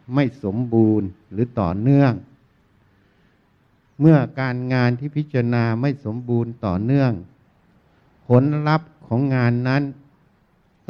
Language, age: Thai, 60-79